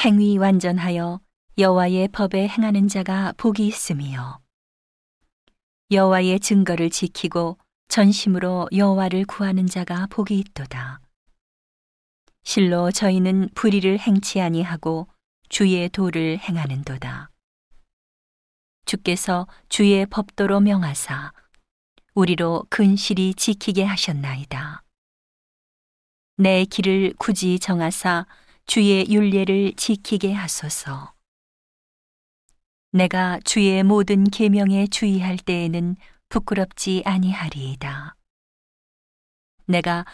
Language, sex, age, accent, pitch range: Korean, female, 40-59, native, 165-200 Hz